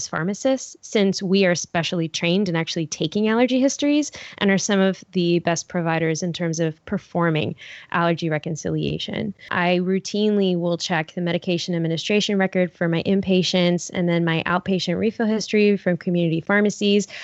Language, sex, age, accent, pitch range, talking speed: English, female, 10-29, American, 170-195 Hz, 155 wpm